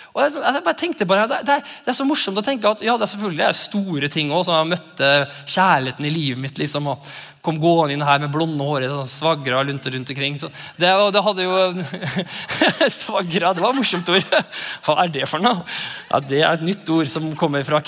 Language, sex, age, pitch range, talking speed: English, male, 20-39, 145-205 Hz, 240 wpm